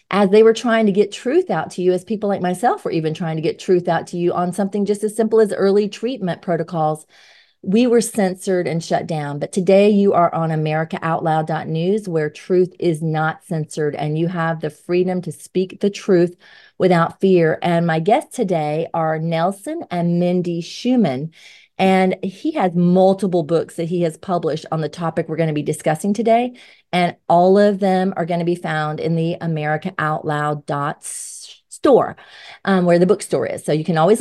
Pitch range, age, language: 165-205 Hz, 30-49, English